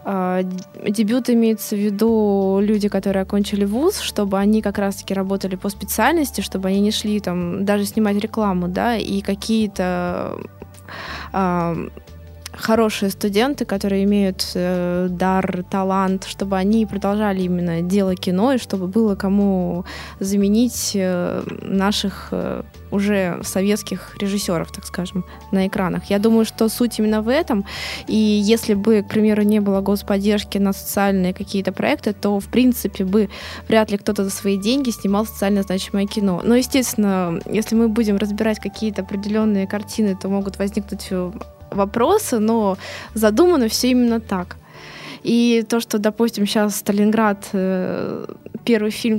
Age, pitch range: 20-39, 195-215 Hz